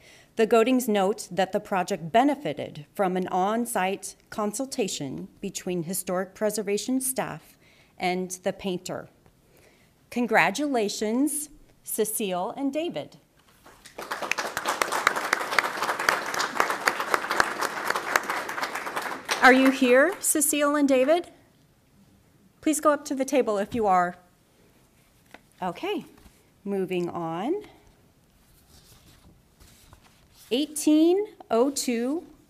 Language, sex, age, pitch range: English, female, 40-59, 190-265 Hz